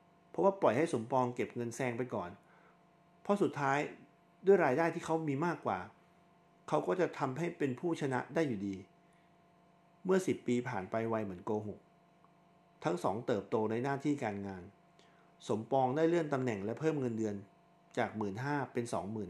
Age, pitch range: 60-79, 115-175 Hz